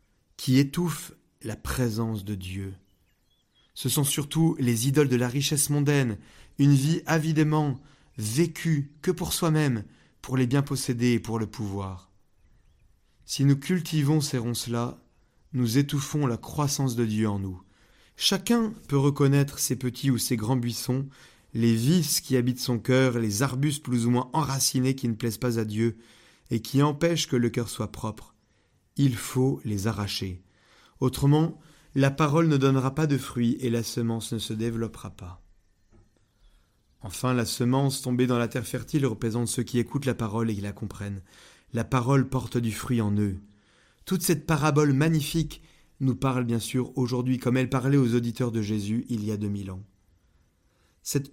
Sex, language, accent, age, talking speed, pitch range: male, French, French, 30-49, 170 wpm, 115-145 Hz